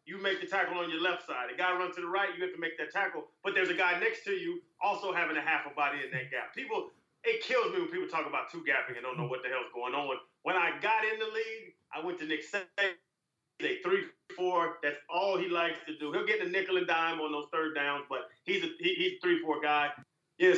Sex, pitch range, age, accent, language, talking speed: male, 170-235 Hz, 30-49, American, English, 265 wpm